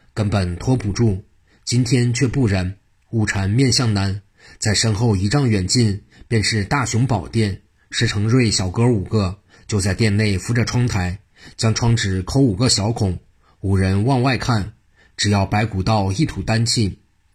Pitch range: 100-115 Hz